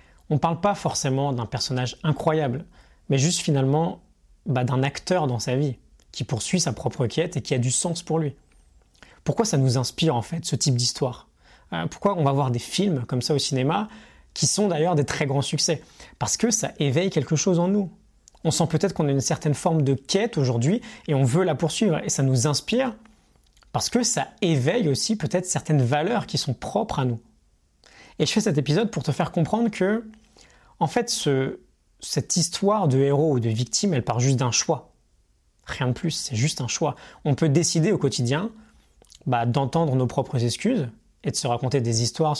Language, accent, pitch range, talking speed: French, French, 130-165 Hz, 205 wpm